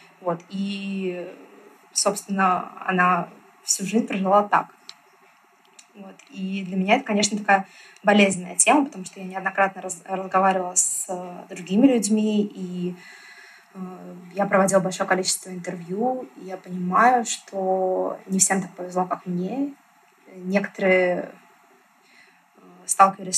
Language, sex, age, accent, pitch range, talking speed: Russian, female, 20-39, native, 185-200 Hz, 105 wpm